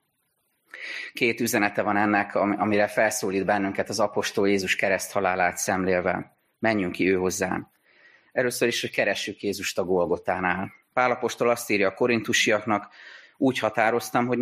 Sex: male